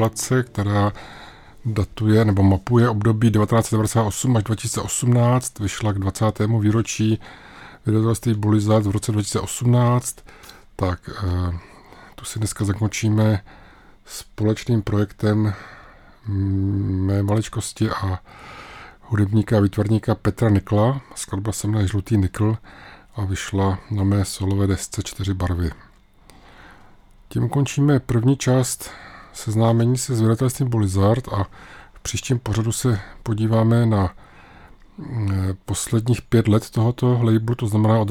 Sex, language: male, Czech